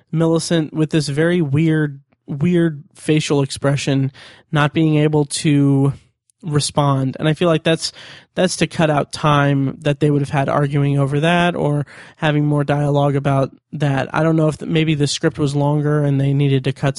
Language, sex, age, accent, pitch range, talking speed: English, male, 20-39, American, 140-155 Hz, 180 wpm